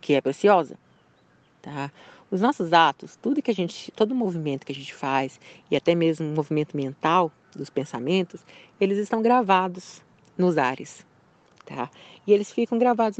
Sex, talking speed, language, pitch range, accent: female, 165 wpm, Portuguese, 160-230 Hz, Brazilian